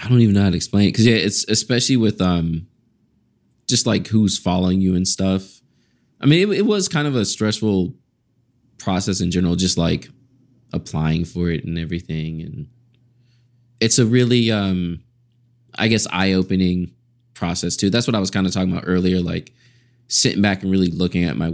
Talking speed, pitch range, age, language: 190 wpm, 90-120 Hz, 20-39, English